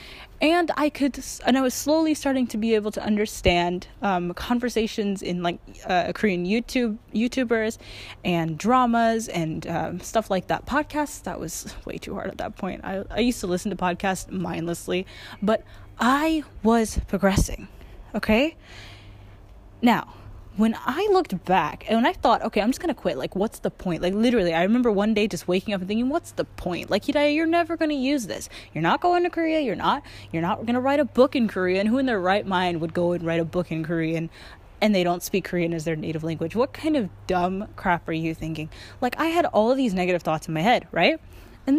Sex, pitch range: female, 175-250 Hz